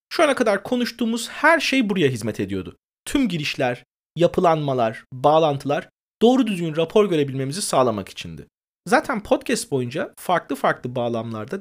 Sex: male